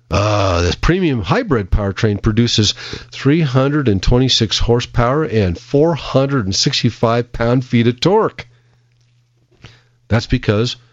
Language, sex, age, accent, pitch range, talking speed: English, male, 50-69, American, 105-120 Hz, 80 wpm